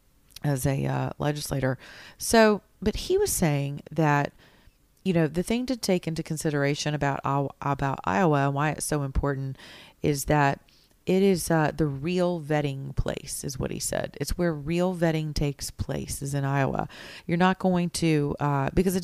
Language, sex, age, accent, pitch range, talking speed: English, female, 30-49, American, 140-160 Hz, 175 wpm